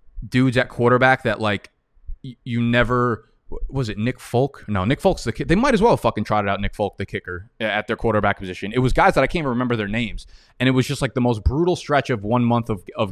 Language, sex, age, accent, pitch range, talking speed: English, male, 20-39, American, 110-140 Hz, 260 wpm